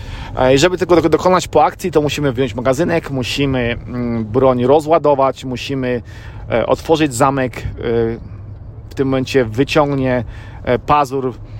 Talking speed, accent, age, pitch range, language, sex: 110 wpm, native, 40-59, 110-135 Hz, Polish, male